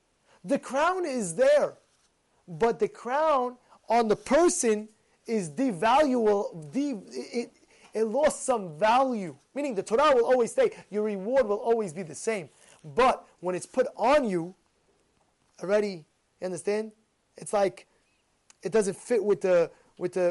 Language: English